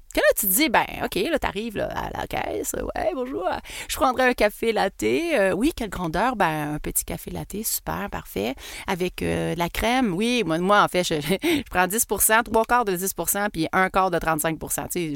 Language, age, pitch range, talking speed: French, 30-49, 180-285 Hz, 220 wpm